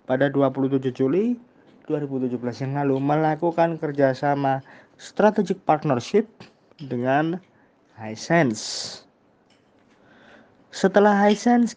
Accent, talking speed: native, 65 wpm